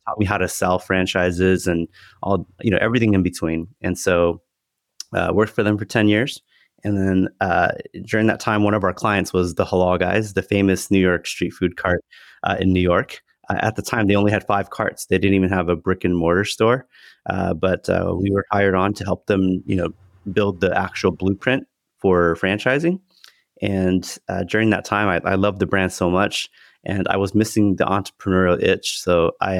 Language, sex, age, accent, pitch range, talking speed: English, male, 30-49, American, 90-105 Hz, 210 wpm